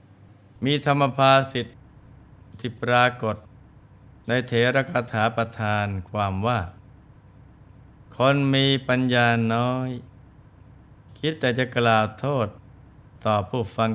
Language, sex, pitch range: Thai, male, 105-130 Hz